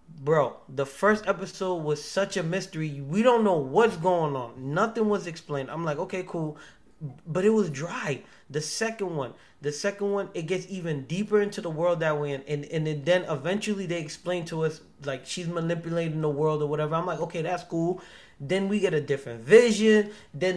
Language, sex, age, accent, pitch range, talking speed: English, male, 20-39, American, 155-215 Hz, 200 wpm